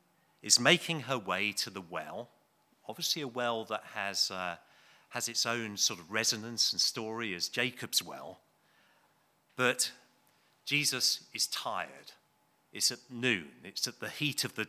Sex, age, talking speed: male, 40-59, 150 wpm